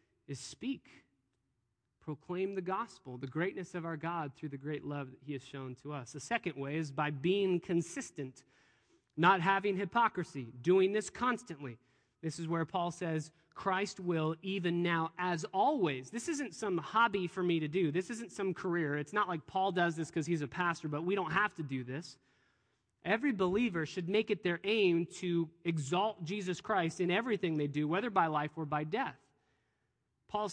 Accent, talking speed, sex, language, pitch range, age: American, 185 wpm, male, English, 145-195 Hz, 30-49